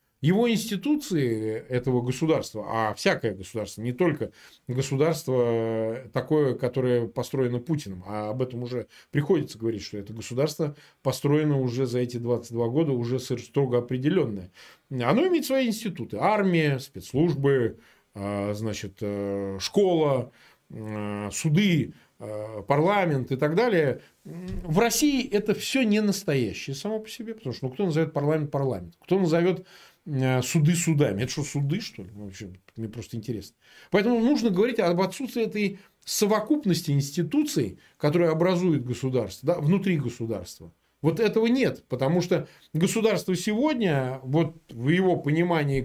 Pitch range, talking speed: 120-180 Hz, 130 wpm